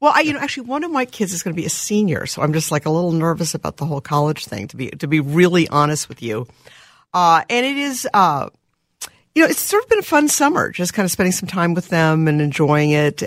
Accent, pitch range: American, 160-235 Hz